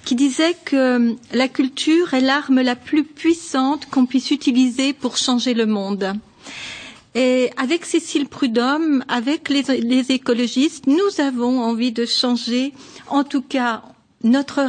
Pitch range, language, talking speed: 240-295 Hz, French, 140 wpm